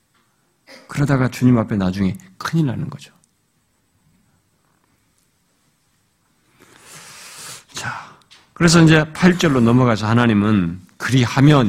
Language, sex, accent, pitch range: Korean, male, native, 100-150 Hz